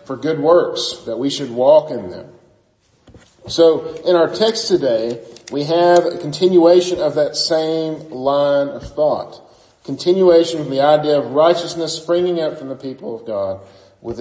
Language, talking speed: English, 160 wpm